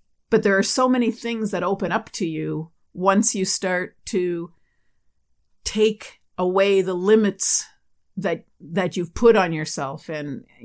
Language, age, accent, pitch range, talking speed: English, 50-69, American, 165-210 Hz, 150 wpm